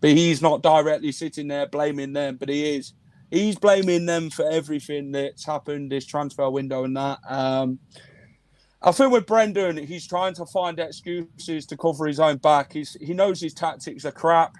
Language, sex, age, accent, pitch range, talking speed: English, male, 30-49, British, 145-175 Hz, 185 wpm